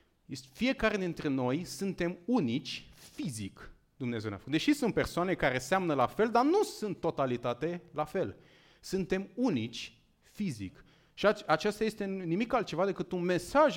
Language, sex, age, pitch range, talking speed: Romanian, male, 30-49, 145-215 Hz, 150 wpm